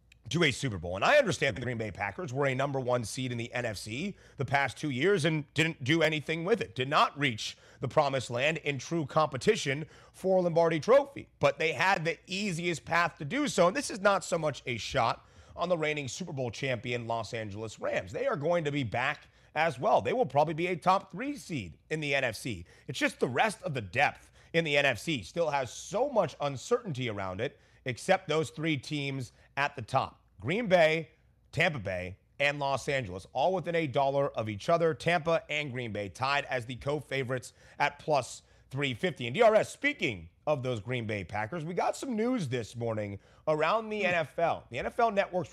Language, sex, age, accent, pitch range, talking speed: English, male, 30-49, American, 125-175 Hz, 205 wpm